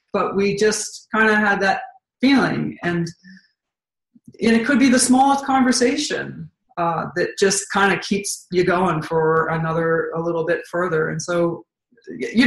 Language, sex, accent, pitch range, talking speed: English, female, American, 175-220 Hz, 160 wpm